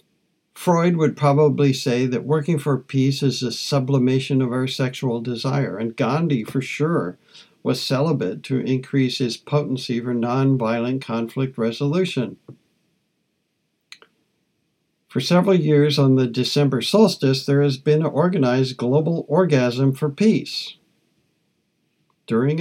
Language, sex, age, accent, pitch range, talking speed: English, male, 60-79, American, 125-150 Hz, 120 wpm